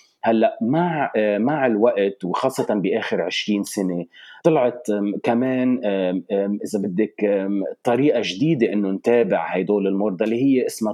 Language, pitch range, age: Arabic, 100-125 Hz, 30-49